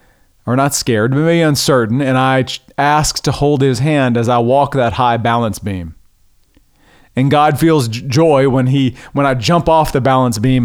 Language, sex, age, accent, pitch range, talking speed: English, male, 40-59, American, 105-135 Hz, 195 wpm